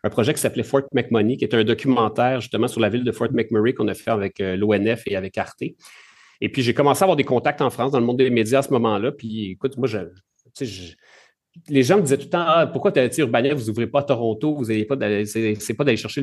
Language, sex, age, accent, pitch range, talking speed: French, male, 40-59, Canadian, 110-135 Hz, 265 wpm